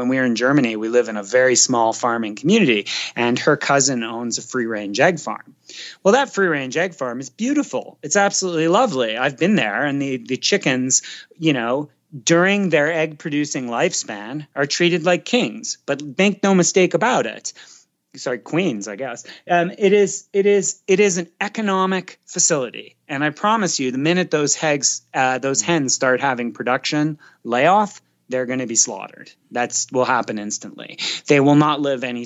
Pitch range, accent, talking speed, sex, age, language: 120-165 Hz, American, 180 wpm, male, 30-49, English